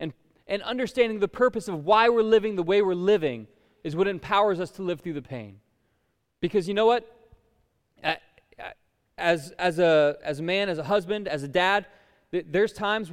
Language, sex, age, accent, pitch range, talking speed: English, male, 20-39, American, 150-195 Hz, 185 wpm